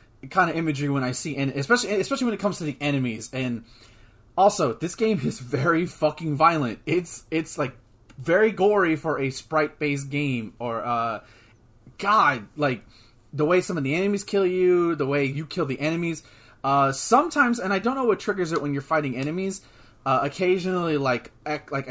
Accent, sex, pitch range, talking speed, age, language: American, male, 130-165 Hz, 185 wpm, 30-49, English